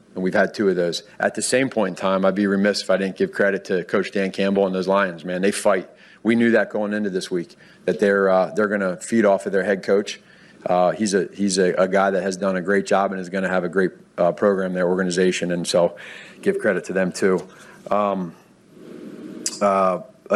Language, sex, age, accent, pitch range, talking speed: English, male, 40-59, American, 95-110 Hz, 245 wpm